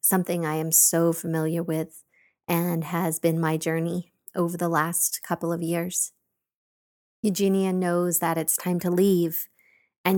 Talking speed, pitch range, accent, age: 145 wpm, 165-190 Hz, American, 30-49